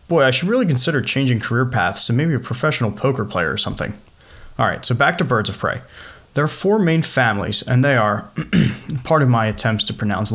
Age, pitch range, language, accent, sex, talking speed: 30-49, 110-145 Hz, English, American, male, 220 wpm